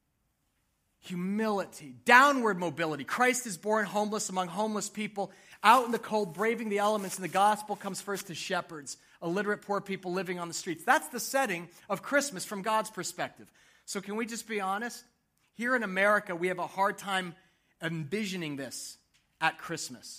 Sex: male